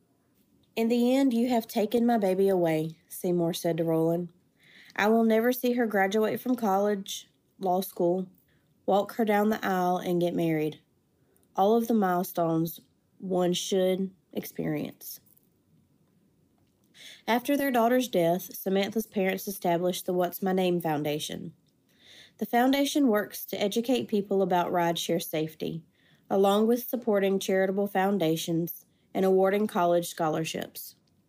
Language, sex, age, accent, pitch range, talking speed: English, female, 30-49, American, 175-215 Hz, 130 wpm